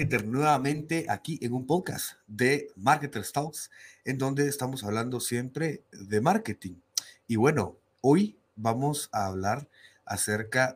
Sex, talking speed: male, 125 wpm